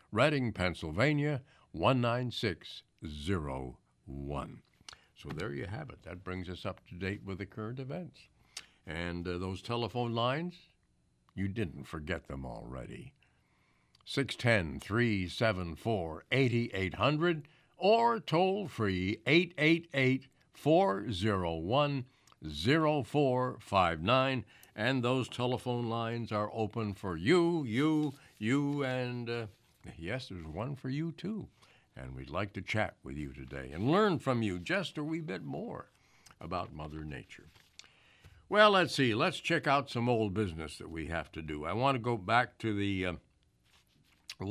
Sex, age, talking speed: male, 60-79, 130 wpm